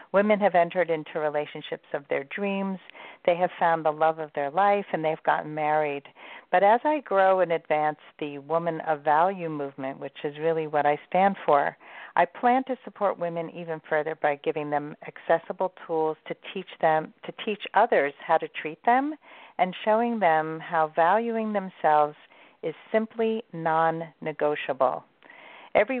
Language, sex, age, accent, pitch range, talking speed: English, female, 50-69, American, 155-195 Hz, 160 wpm